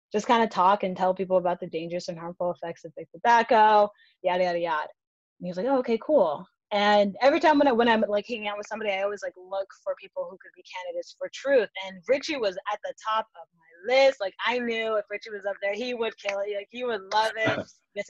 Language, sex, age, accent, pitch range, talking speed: English, female, 20-39, American, 185-230 Hz, 250 wpm